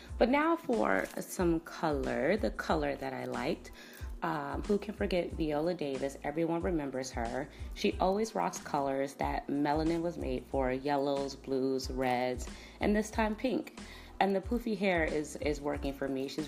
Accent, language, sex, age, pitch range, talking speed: American, English, female, 30-49, 130-170 Hz, 165 wpm